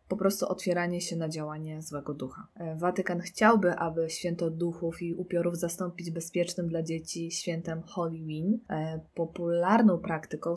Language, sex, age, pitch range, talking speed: Polish, female, 20-39, 160-190 Hz, 130 wpm